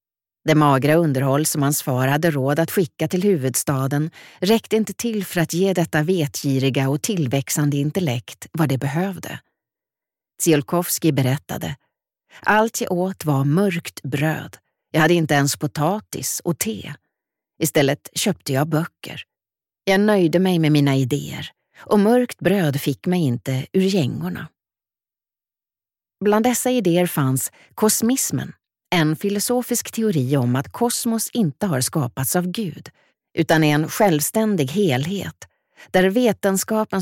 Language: Swedish